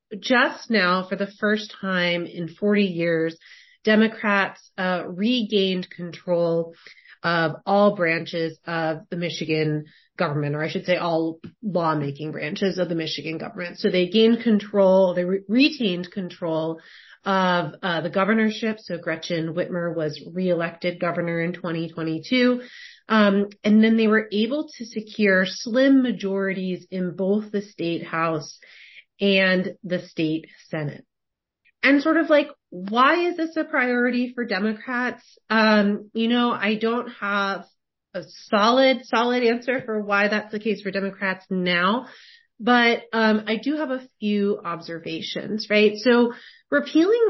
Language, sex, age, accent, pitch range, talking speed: English, female, 30-49, American, 175-220 Hz, 140 wpm